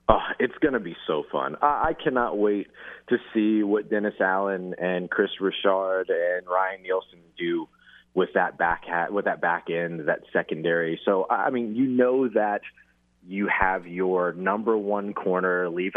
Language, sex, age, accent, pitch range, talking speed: English, male, 30-49, American, 85-105 Hz, 170 wpm